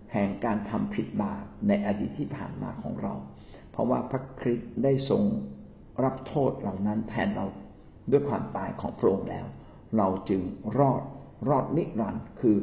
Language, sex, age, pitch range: Thai, male, 60-79, 105-135 Hz